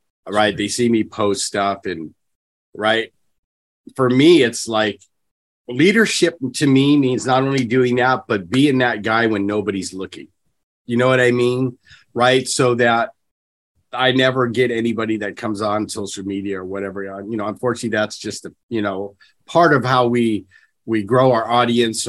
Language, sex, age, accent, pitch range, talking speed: English, male, 40-59, American, 100-125 Hz, 165 wpm